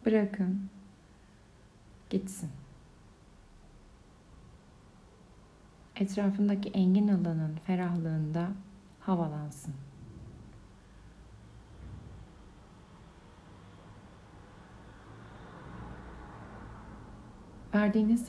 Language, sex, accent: Turkish, female, native